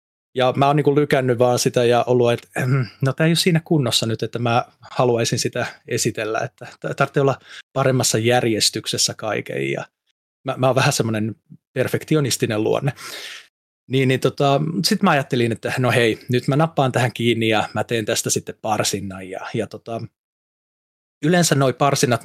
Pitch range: 115-150 Hz